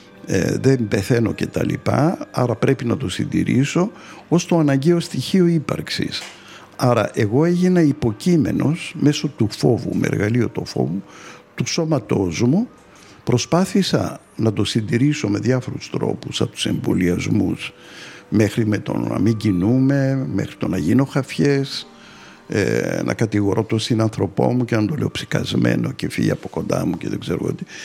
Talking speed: 150 wpm